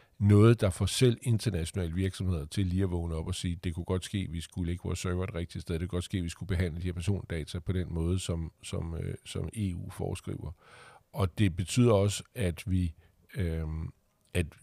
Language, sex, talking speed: Danish, male, 220 wpm